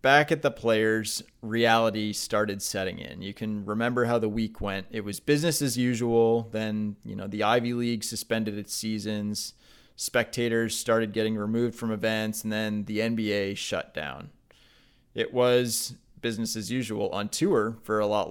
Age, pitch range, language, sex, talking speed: 20-39, 105-120 Hz, English, male, 165 wpm